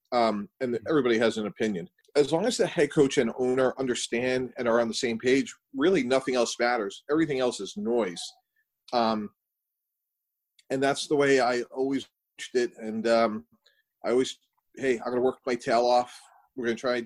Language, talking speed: English, 185 wpm